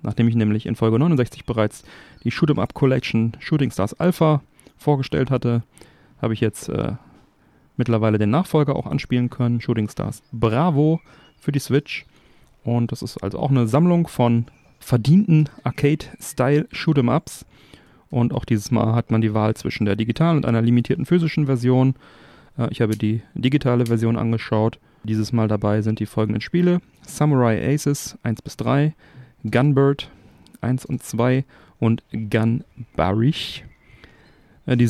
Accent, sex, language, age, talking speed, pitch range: German, male, German, 40-59, 145 wpm, 115-140 Hz